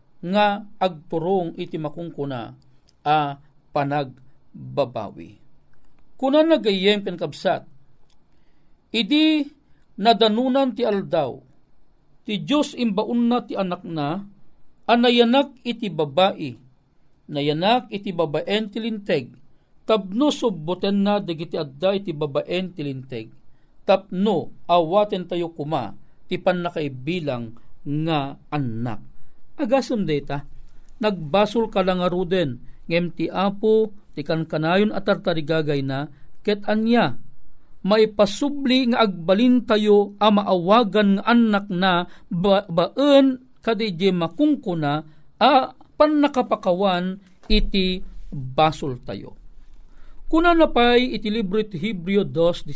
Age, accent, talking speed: 50-69, native, 90 wpm